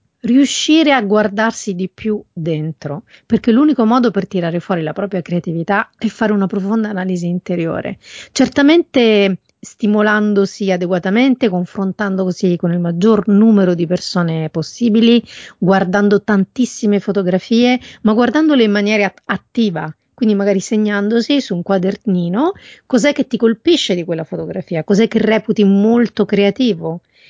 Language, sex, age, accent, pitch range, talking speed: Italian, female, 40-59, native, 180-230 Hz, 130 wpm